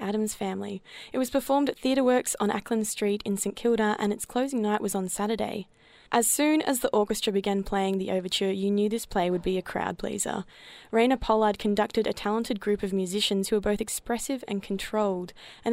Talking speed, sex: 200 wpm, female